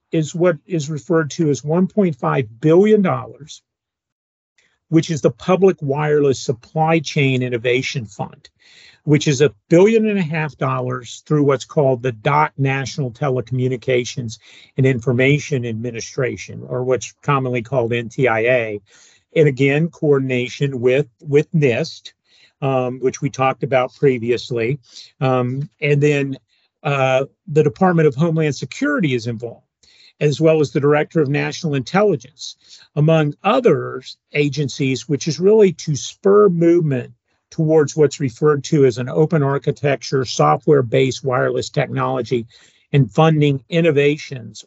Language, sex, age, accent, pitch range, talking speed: English, male, 50-69, American, 130-155 Hz, 125 wpm